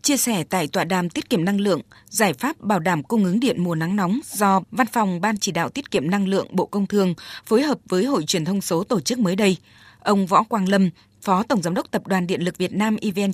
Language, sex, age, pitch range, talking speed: Vietnamese, female, 20-39, 180-220 Hz, 260 wpm